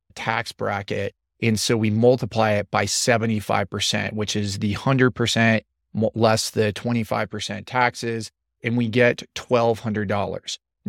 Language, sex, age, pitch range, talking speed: English, male, 30-49, 110-125 Hz, 115 wpm